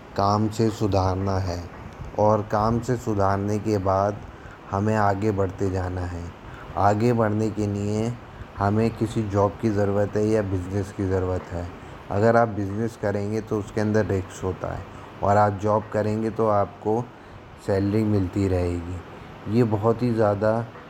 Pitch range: 100-110 Hz